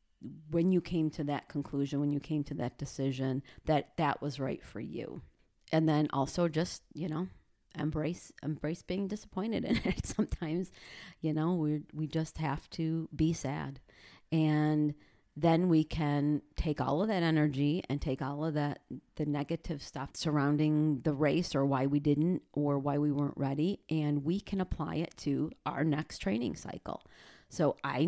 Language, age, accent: English, 40-59, American